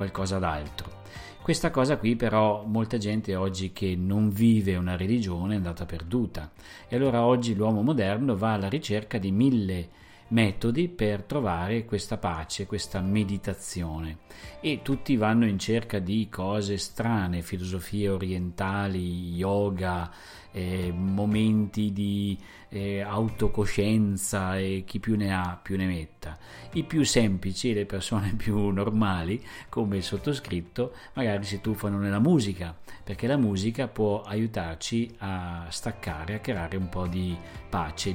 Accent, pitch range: native, 95-115 Hz